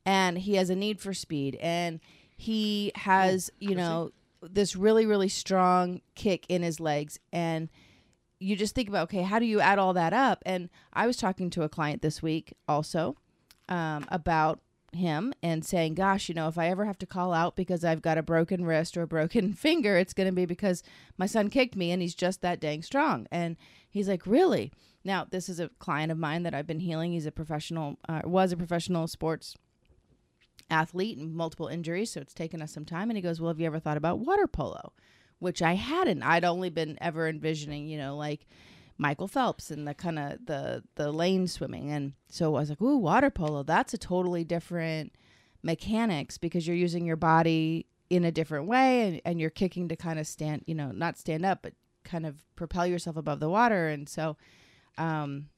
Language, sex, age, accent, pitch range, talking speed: English, female, 30-49, American, 160-190 Hz, 210 wpm